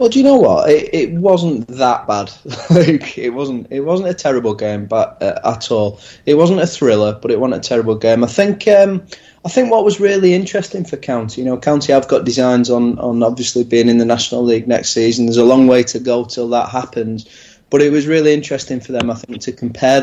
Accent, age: British, 20-39